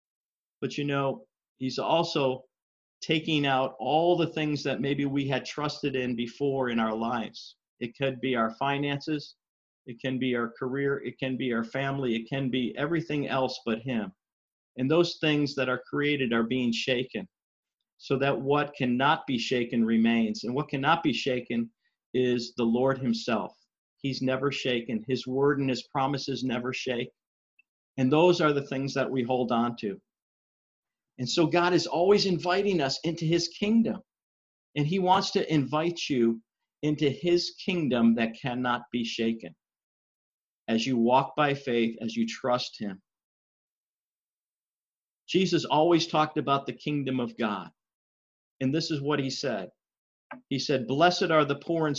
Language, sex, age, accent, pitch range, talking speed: English, male, 50-69, American, 125-150 Hz, 160 wpm